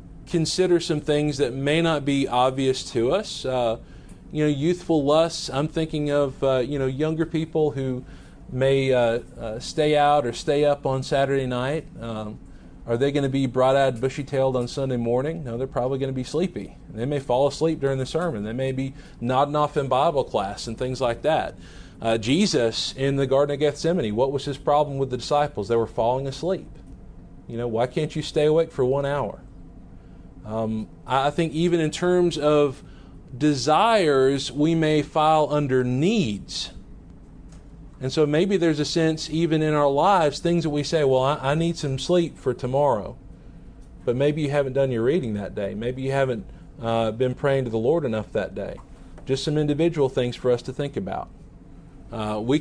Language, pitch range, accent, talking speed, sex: English, 125-155 Hz, American, 190 wpm, male